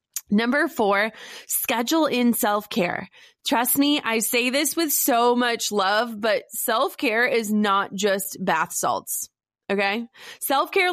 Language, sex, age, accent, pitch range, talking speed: English, female, 20-39, American, 210-260 Hz, 125 wpm